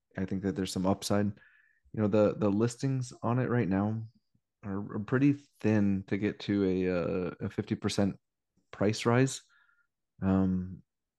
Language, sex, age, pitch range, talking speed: English, male, 20-39, 95-105 Hz, 150 wpm